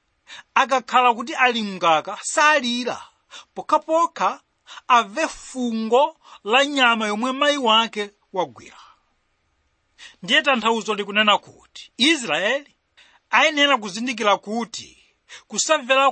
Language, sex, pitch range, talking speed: English, male, 210-270 Hz, 85 wpm